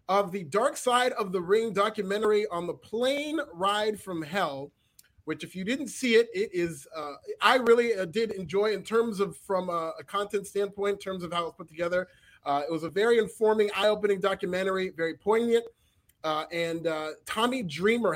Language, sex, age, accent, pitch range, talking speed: English, male, 30-49, American, 165-210 Hz, 195 wpm